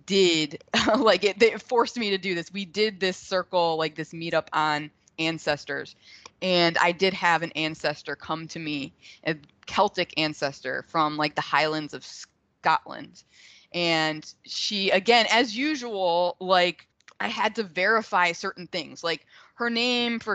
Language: English